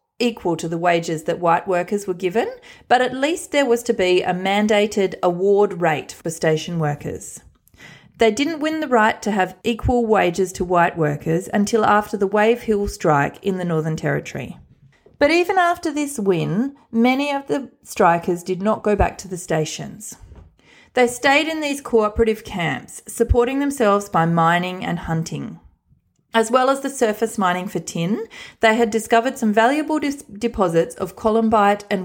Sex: female